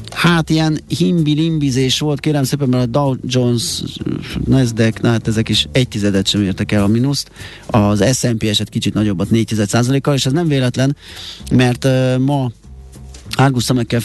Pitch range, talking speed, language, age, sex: 110-120 Hz, 170 wpm, Hungarian, 30-49, male